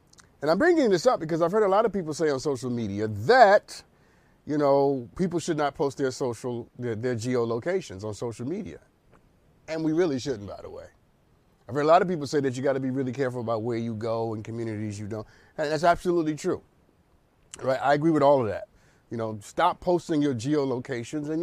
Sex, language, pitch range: male, English, 130-190 Hz